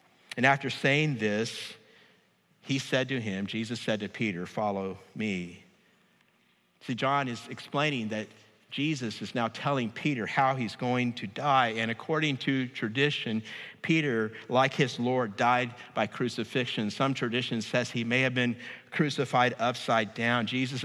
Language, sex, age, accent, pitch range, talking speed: English, male, 50-69, American, 110-140 Hz, 145 wpm